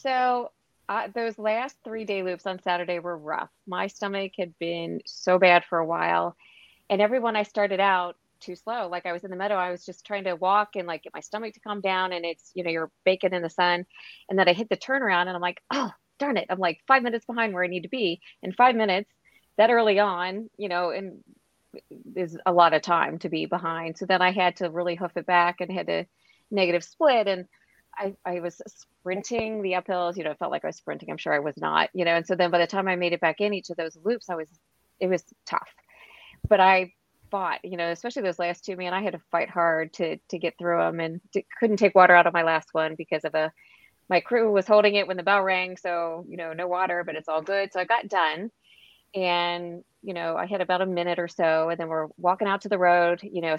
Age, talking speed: 30-49, 255 wpm